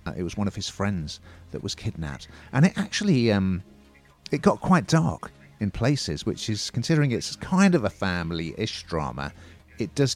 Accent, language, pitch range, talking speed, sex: British, English, 85-115 Hz, 175 wpm, male